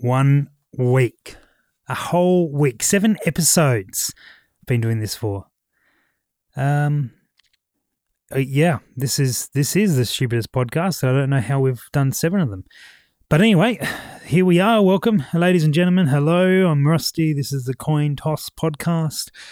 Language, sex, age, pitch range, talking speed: English, male, 30-49, 130-180 Hz, 150 wpm